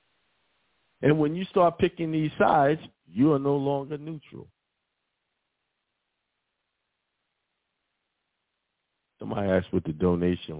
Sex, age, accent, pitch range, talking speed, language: male, 50-69, American, 100-150 Hz, 95 wpm, English